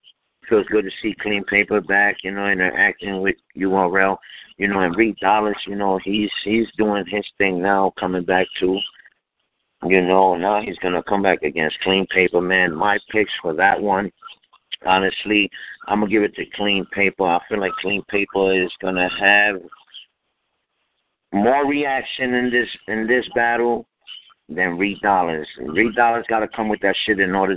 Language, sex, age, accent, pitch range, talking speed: English, male, 50-69, American, 95-110 Hz, 175 wpm